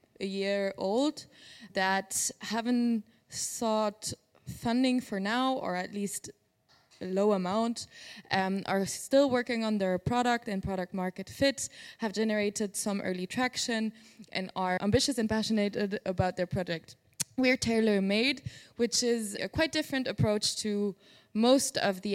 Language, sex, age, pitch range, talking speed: English, female, 20-39, 190-220 Hz, 140 wpm